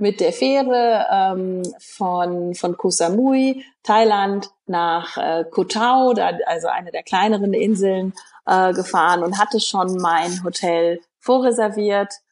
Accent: German